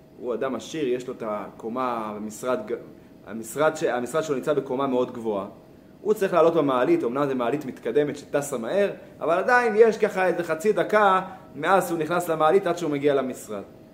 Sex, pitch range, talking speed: male, 150-200 Hz, 165 wpm